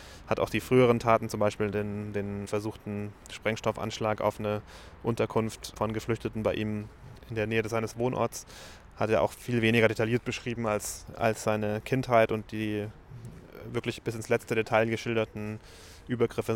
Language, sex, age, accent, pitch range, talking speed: German, male, 20-39, German, 105-115 Hz, 155 wpm